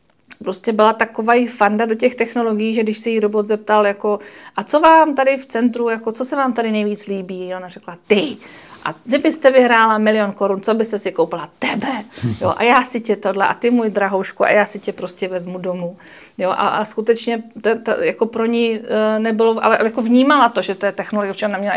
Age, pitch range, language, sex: 40-59, 205-240 Hz, Czech, female